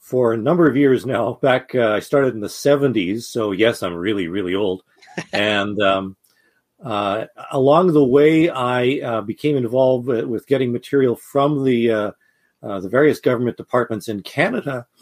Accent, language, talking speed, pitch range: American, English, 170 wpm, 110-140 Hz